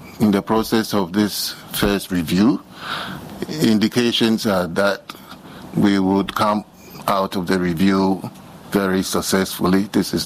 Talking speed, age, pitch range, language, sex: 125 wpm, 50-69, 95-115 Hz, English, male